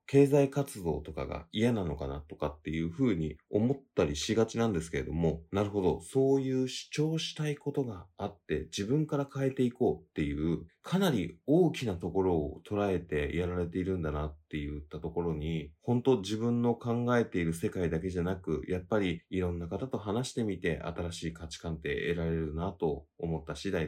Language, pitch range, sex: Japanese, 80-120 Hz, male